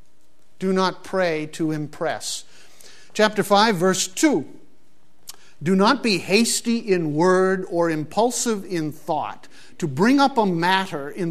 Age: 50-69